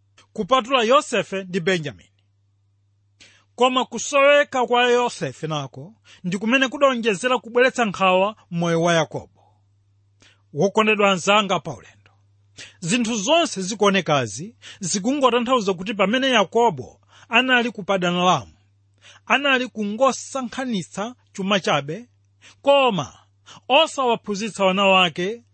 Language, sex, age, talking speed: English, male, 40-59, 95 wpm